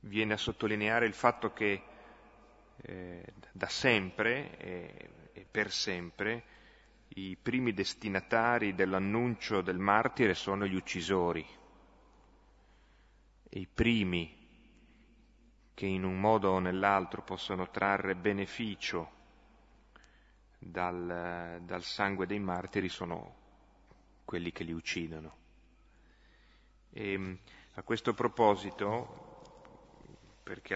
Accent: native